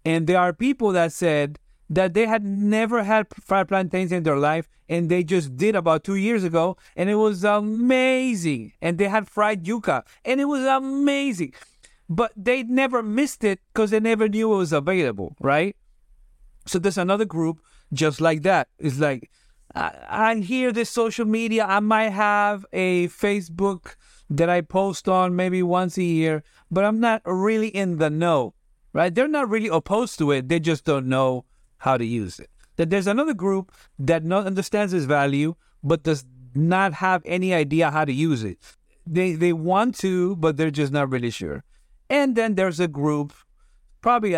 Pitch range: 155-210 Hz